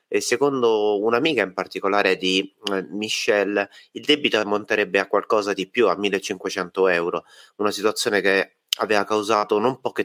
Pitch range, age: 95-120 Hz, 30-49